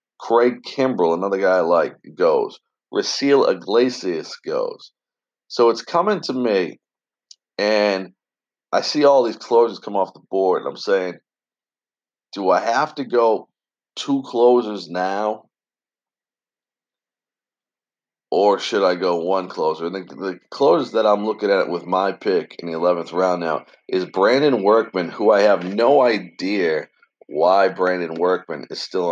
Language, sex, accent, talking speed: English, male, American, 145 wpm